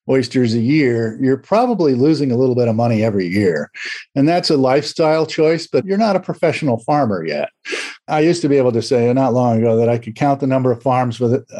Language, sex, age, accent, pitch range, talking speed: English, male, 50-69, American, 120-160 Hz, 230 wpm